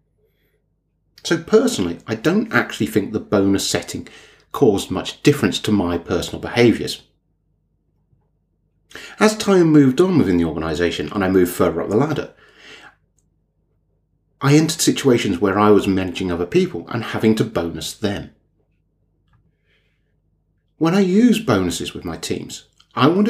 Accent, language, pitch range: British, English, 95-145 Hz